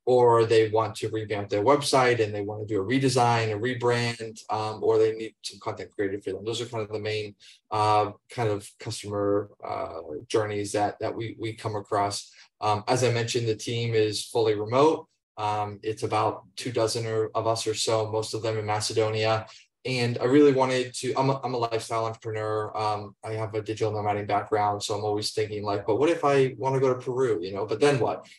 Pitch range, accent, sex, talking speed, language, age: 105-120 Hz, American, male, 215 wpm, English, 20-39